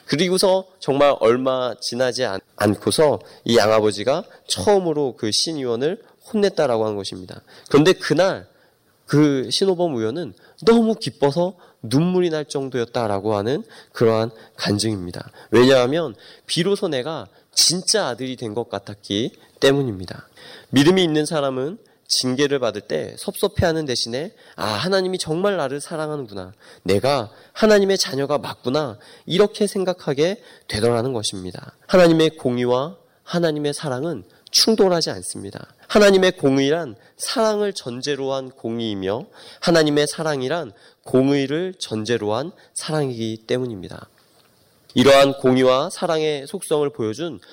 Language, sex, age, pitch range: Korean, male, 20-39, 115-170 Hz